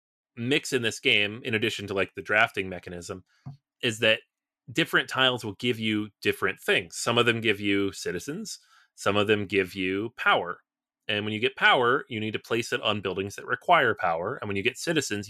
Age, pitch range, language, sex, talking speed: 30-49, 100-130 Hz, English, male, 205 wpm